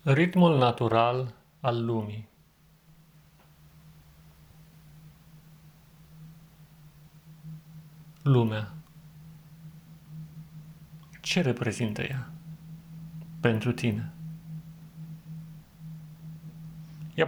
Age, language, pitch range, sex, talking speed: 40-59, Romanian, 130-160 Hz, male, 40 wpm